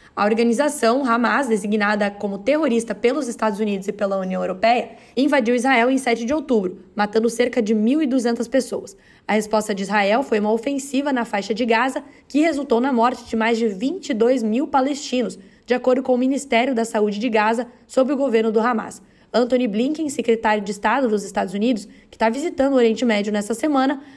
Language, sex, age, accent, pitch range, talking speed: Portuguese, female, 10-29, Brazilian, 220-260 Hz, 185 wpm